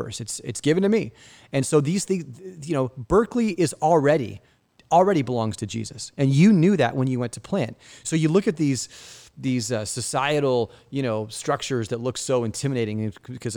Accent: American